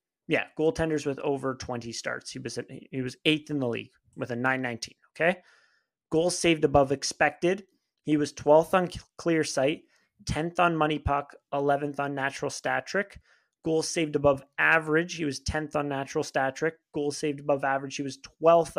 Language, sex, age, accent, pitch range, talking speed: English, male, 30-49, American, 140-170 Hz, 180 wpm